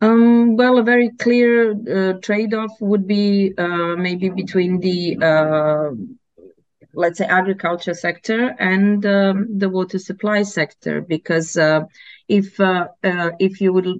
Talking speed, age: 135 wpm, 30-49